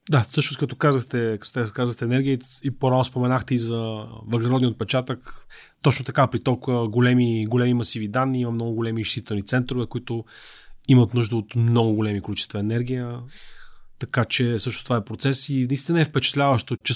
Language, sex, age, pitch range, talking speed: Bulgarian, male, 30-49, 115-135 Hz, 165 wpm